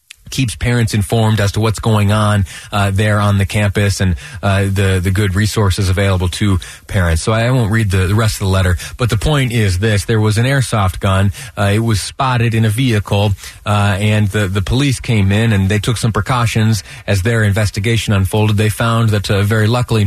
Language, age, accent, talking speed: English, 30-49, American, 210 wpm